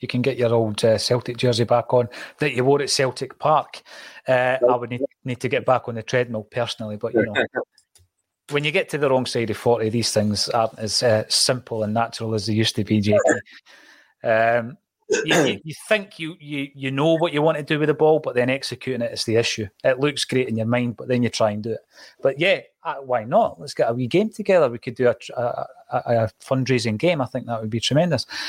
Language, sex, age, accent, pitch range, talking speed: English, male, 30-49, British, 110-130 Hz, 240 wpm